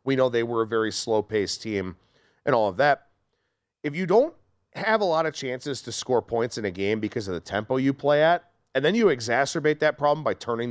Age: 40-59